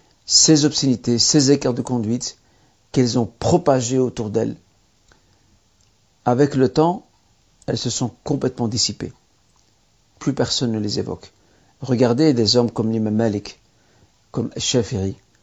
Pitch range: 110-135 Hz